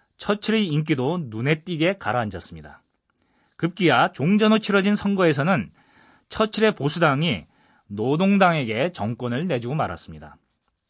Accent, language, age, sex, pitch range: native, Korean, 30-49, male, 135-195 Hz